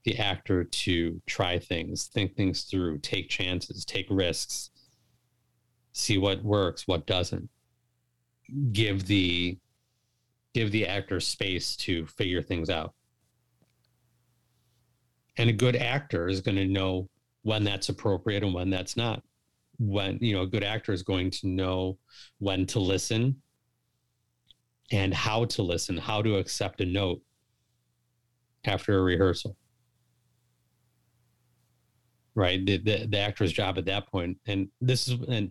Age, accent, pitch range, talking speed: 40-59, American, 95-120 Hz, 135 wpm